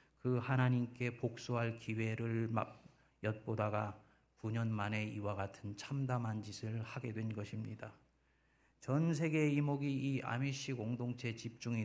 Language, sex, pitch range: Korean, male, 110-150 Hz